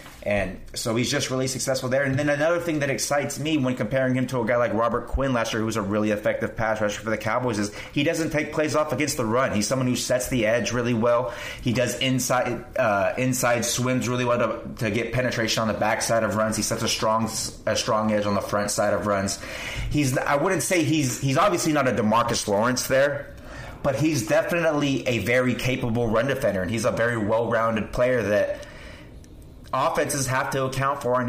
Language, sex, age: English, male, 30-49